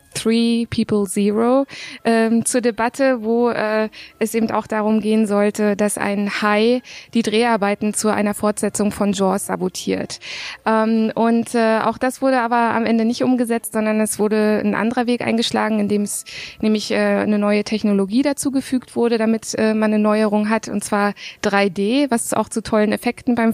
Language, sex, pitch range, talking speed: German, female, 205-225 Hz, 175 wpm